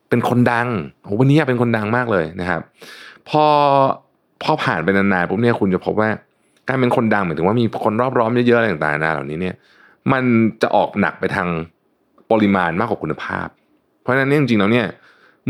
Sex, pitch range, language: male, 95-125 Hz, Thai